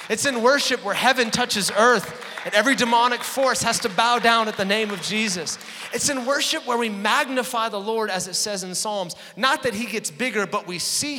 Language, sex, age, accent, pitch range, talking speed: English, male, 30-49, American, 185-255 Hz, 220 wpm